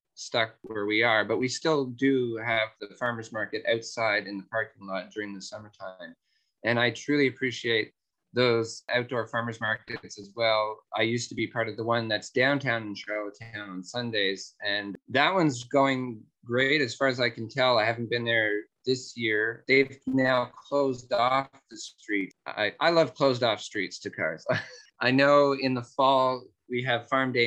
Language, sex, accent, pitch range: English, male, American, 105-130 Hz